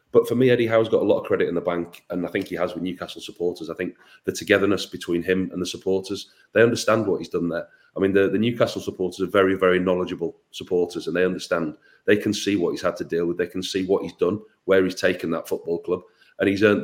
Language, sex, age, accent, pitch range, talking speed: English, male, 30-49, British, 85-100 Hz, 265 wpm